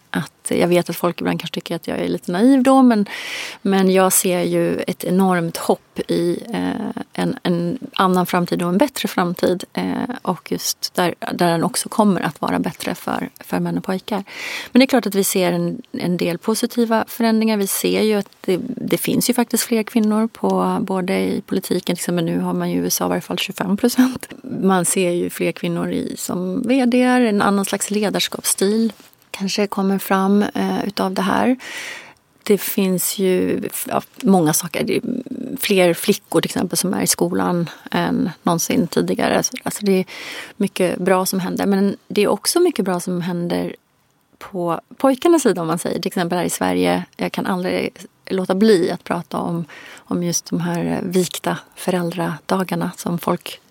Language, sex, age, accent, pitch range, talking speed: Swedish, female, 30-49, native, 175-225 Hz, 190 wpm